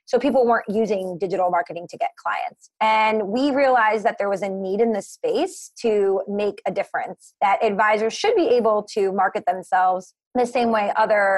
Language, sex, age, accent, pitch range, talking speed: English, female, 20-39, American, 200-255 Hz, 195 wpm